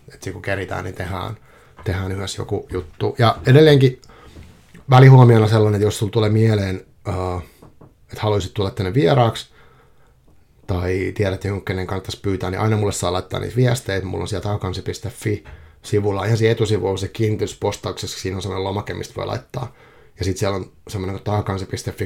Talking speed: 150 wpm